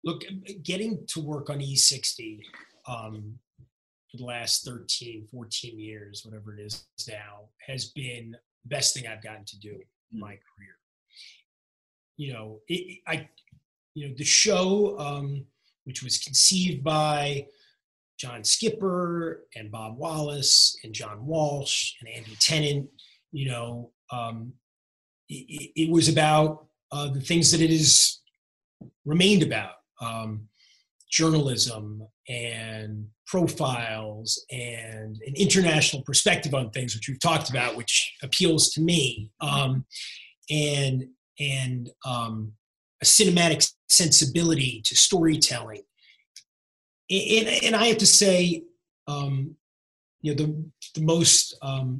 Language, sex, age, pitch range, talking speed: English, male, 30-49, 115-160 Hz, 120 wpm